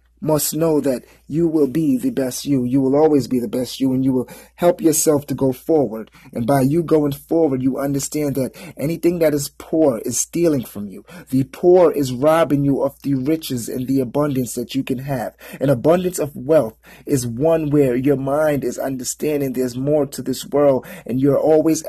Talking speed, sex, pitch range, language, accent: 205 wpm, male, 130-155 Hz, English, American